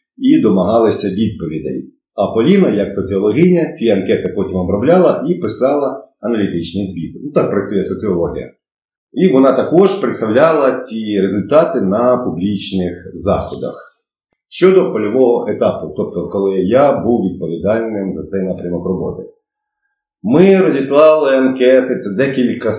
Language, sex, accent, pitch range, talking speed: Ukrainian, male, native, 95-140 Hz, 115 wpm